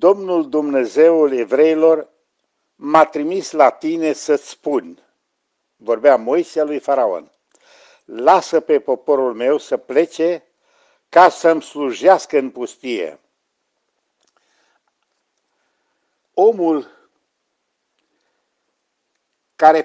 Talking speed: 80 wpm